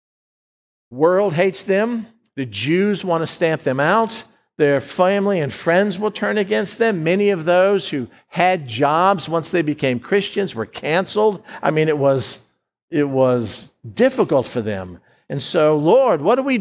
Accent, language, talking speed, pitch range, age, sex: American, English, 165 wpm, 145-195 Hz, 60-79, male